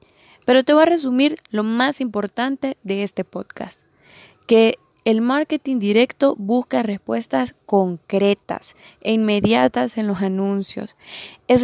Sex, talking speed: female, 125 wpm